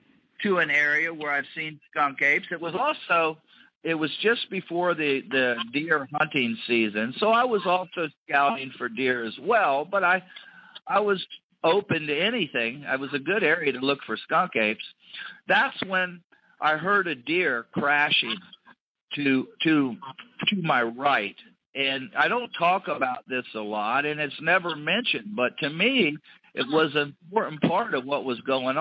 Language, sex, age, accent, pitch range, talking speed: English, male, 50-69, American, 135-190 Hz, 170 wpm